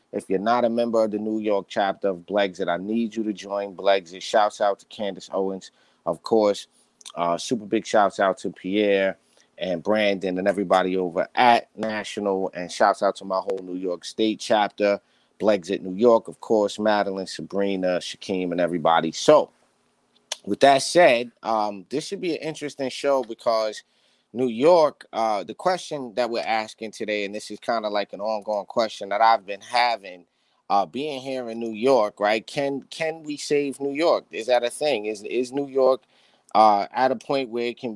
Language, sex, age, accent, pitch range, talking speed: English, male, 30-49, American, 100-130 Hz, 190 wpm